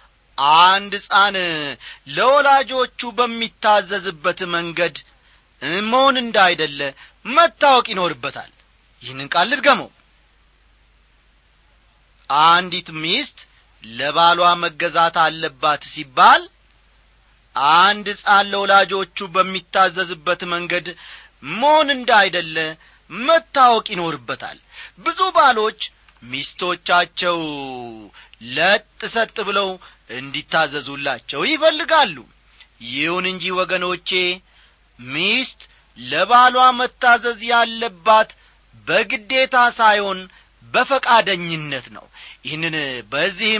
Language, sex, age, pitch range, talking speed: Amharic, male, 40-59, 160-235 Hz, 65 wpm